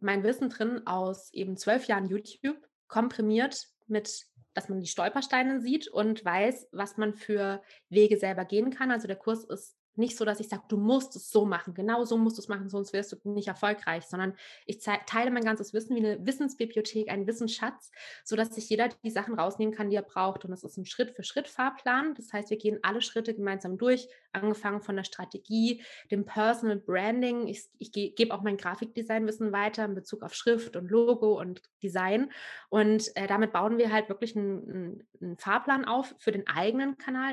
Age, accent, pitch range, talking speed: 20-39, German, 200-235 Hz, 195 wpm